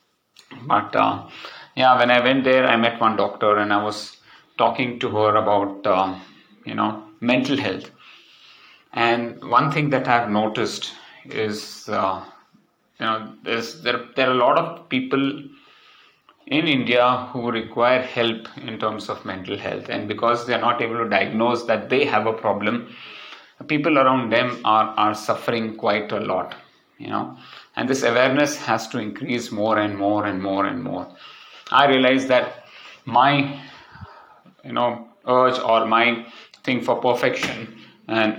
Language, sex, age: English, male, 30-49